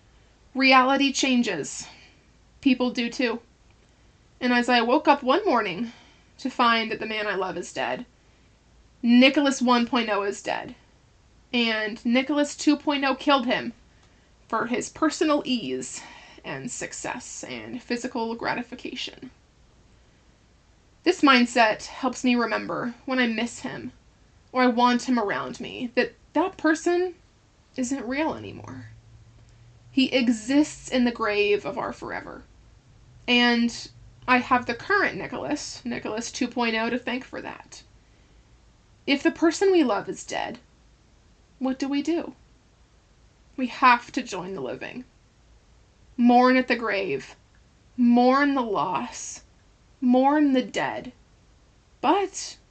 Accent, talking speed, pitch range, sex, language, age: American, 125 wpm, 235-280 Hz, female, English, 20-39